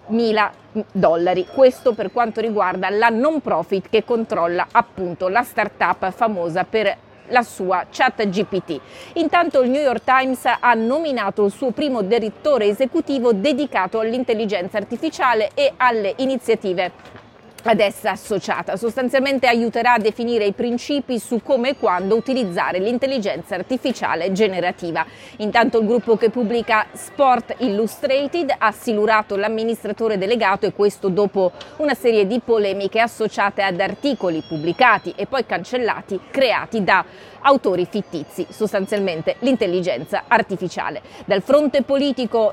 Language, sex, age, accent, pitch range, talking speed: Italian, female, 30-49, native, 200-245 Hz, 125 wpm